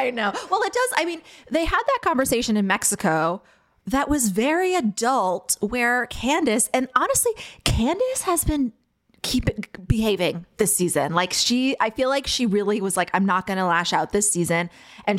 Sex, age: female, 20-39